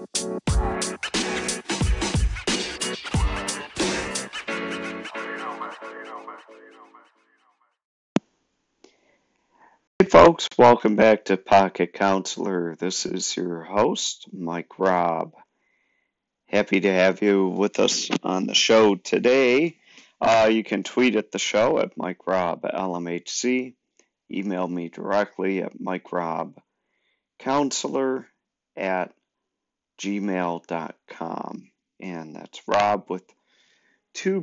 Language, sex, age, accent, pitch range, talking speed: English, male, 50-69, American, 90-125 Hz, 90 wpm